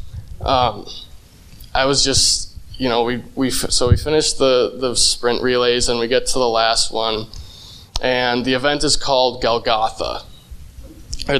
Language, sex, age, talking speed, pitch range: English, male, 20-39, 155 wpm, 115-125 Hz